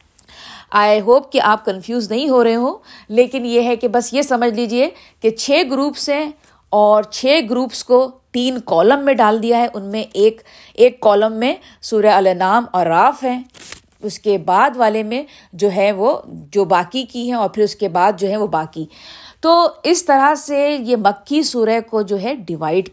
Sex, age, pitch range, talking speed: female, 50-69, 190-255 Hz, 195 wpm